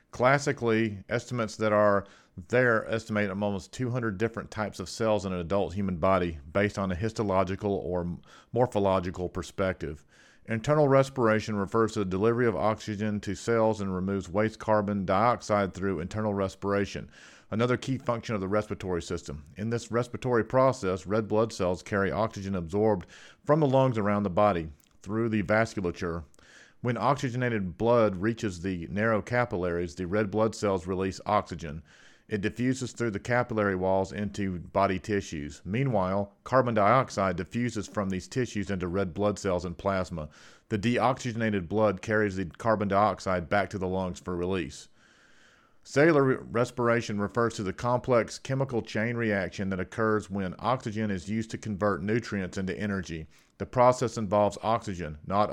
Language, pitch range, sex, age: English, 95-115 Hz, male, 40-59